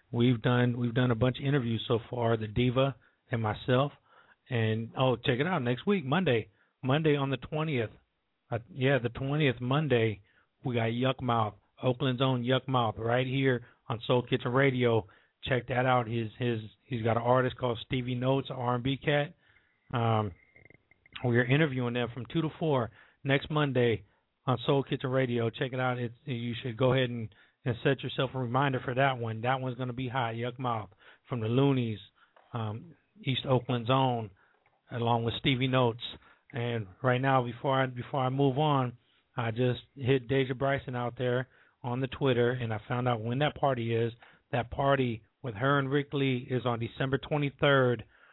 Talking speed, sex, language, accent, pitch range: 180 wpm, male, English, American, 120-135 Hz